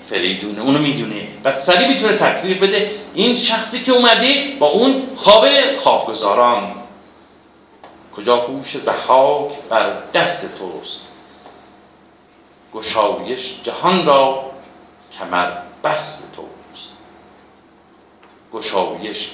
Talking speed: 95 wpm